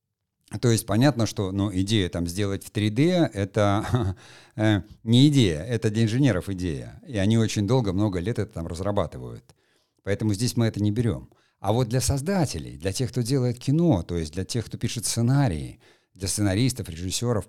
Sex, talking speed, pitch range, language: male, 180 wpm, 95-125 Hz, Russian